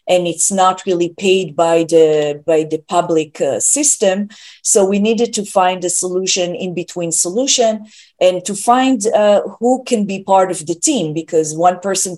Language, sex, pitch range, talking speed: English, female, 175-210 Hz, 175 wpm